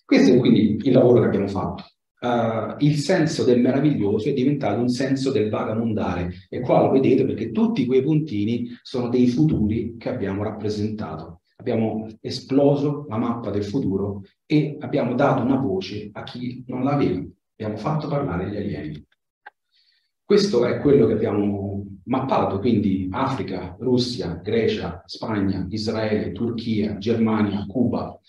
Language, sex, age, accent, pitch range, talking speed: Italian, male, 40-59, native, 105-130 Hz, 145 wpm